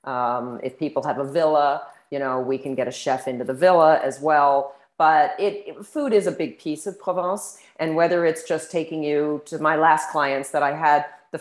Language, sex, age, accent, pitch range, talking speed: English, female, 40-59, American, 150-195 Hz, 210 wpm